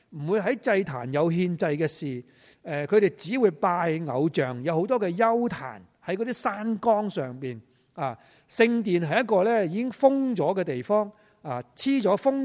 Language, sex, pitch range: Chinese, male, 135-210 Hz